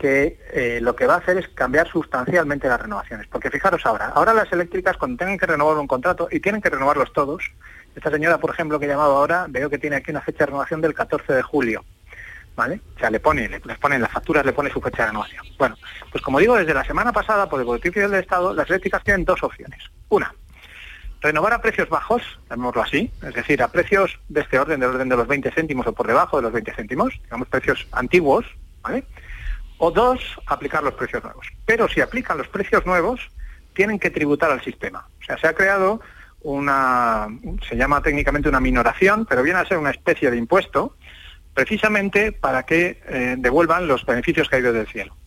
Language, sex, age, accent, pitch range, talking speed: Spanish, male, 30-49, Spanish, 130-180 Hz, 215 wpm